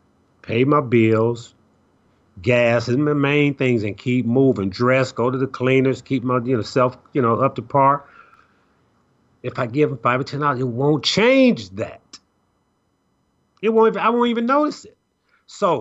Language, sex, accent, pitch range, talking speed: English, male, American, 120-175 Hz, 175 wpm